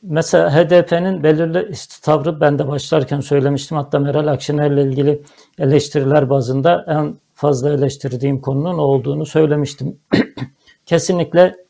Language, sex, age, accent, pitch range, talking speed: Turkish, male, 60-79, native, 145-165 Hz, 110 wpm